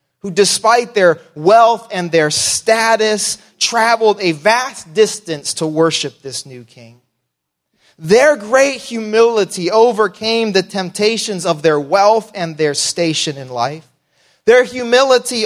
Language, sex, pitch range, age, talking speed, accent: English, male, 125-210 Hz, 30-49, 125 wpm, American